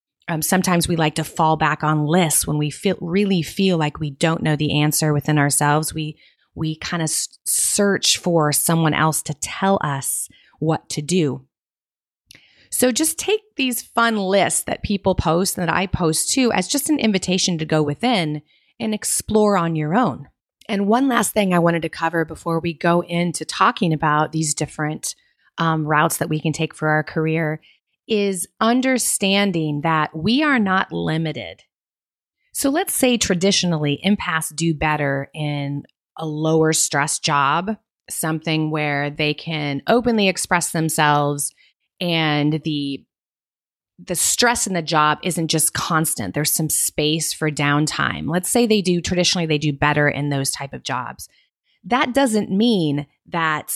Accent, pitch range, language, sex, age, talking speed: American, 150-195 Hz, English, female, 30-49, 165 wpm